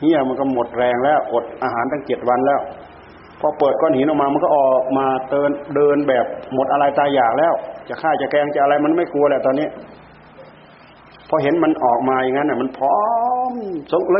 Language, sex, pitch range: Thai, male, 120-150 Hz